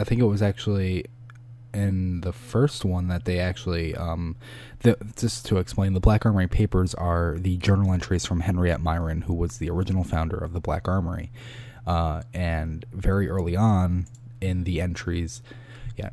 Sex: male